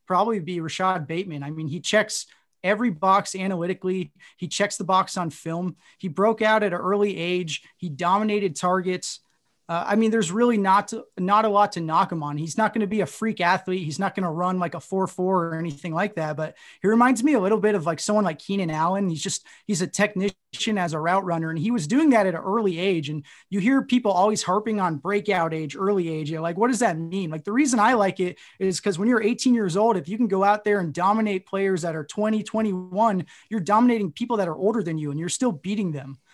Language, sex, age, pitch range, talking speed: English, male, 30-49, 175-210 Hz, 245 wpm